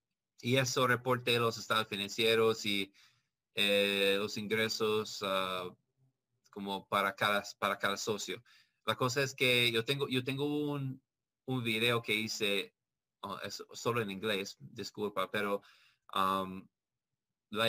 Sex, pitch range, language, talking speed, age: male, 100-115 Hz, Spanish, 130 wpm, 20-39